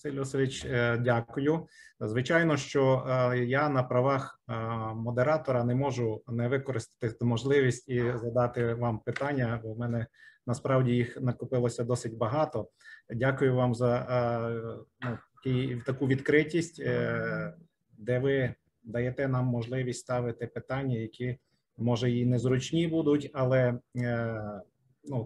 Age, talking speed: 30-49, 110 wpm